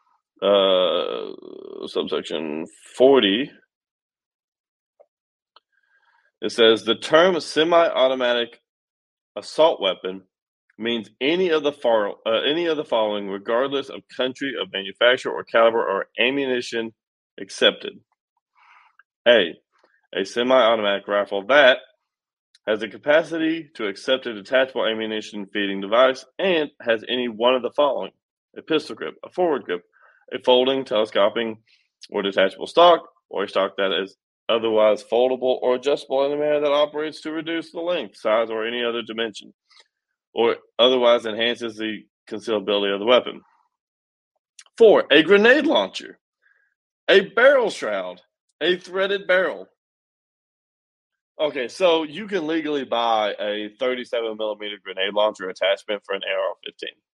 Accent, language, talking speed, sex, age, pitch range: American, English, 120 wpm, male, 30-49, 110-185 Hz